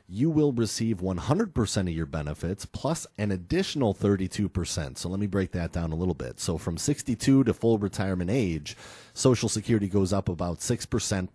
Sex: male